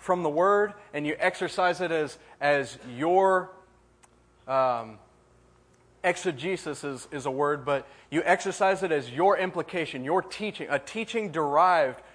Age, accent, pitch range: 30-49, American, 145-185 Hz